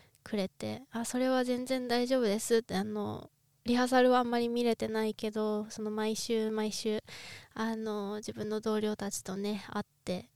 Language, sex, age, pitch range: Japanese, female, 20-39, 210-245 Hz